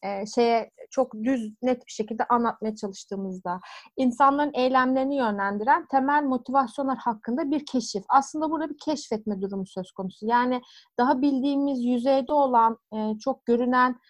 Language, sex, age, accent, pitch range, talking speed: Turkish, female, 30-49, native, 230-275 Hz, 135 wpm